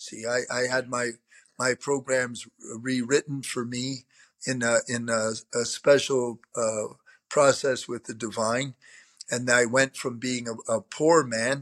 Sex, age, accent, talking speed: male, 50-69, American, 155 wpm